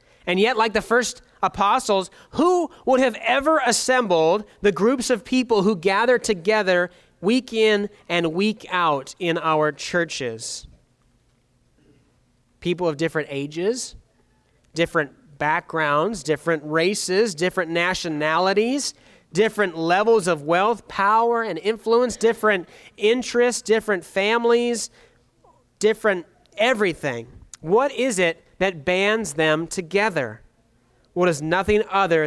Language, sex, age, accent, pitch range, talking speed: English, male, 30-49, American, 165-230 Hz, 110 wpm